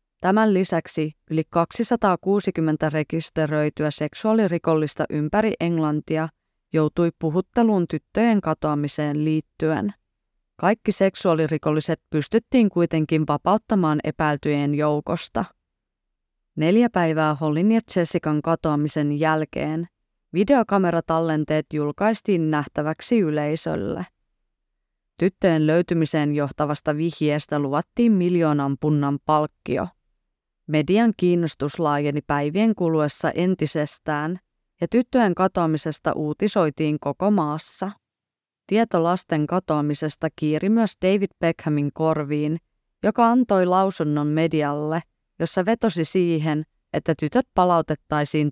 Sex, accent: female, native